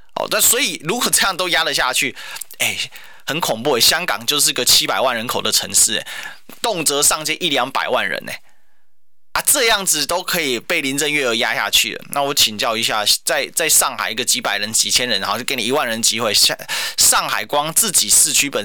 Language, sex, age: Chinese, male, 20-39